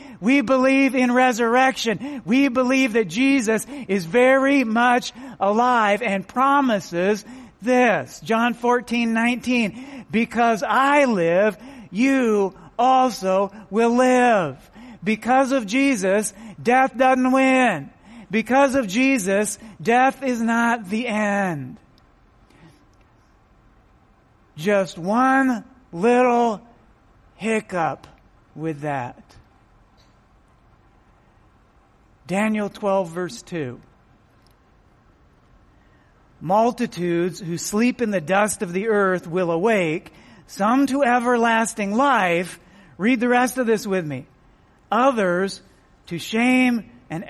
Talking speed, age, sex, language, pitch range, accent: 95 wpm, 40-59, male, English, 170-245 Hz, American